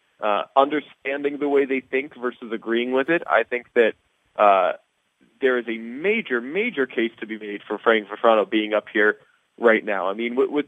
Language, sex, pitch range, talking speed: English, male, 115-145 Hz, 195 wpm